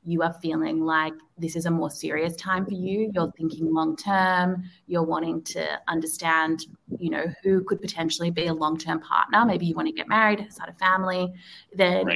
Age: 20-39